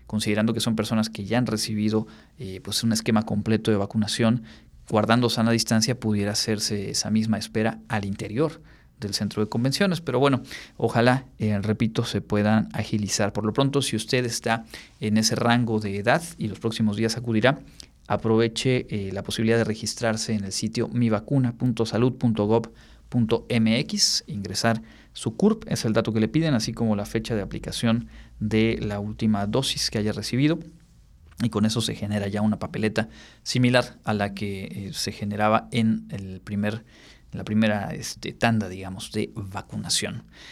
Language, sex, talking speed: Spanish, male, 165 wpm